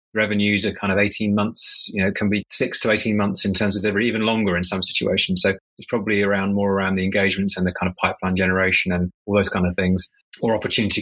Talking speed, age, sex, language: 245 wpm, 30-49, male, English